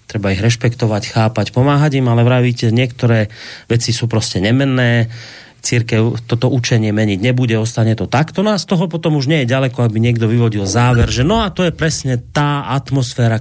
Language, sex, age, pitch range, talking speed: Slovak, male, 30-49, 105-135 Hz, 190 wpm